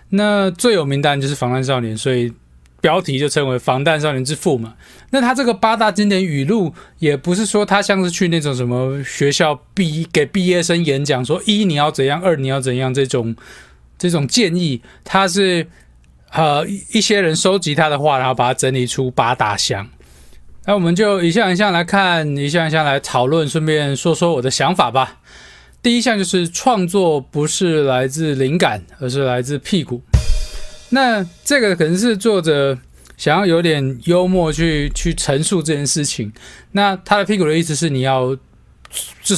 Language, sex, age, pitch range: Chinese, male, 20-39, 130-185 Hz